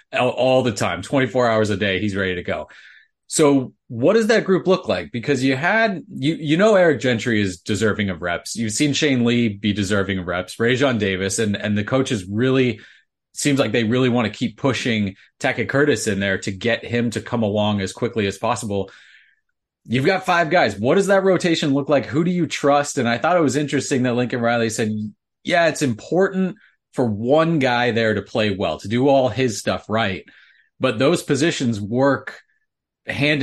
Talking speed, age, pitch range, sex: 205 wpm, 30-49, 105-140 Hz, male